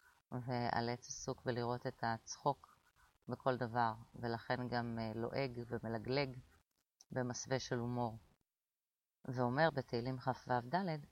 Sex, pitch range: female, 120-145 Hz